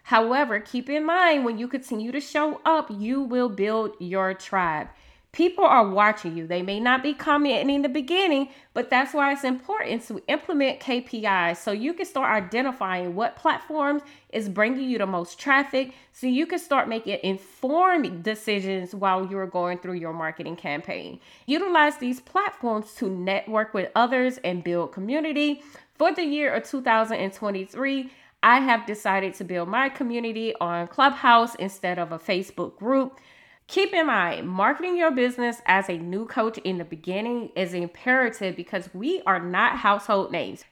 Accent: American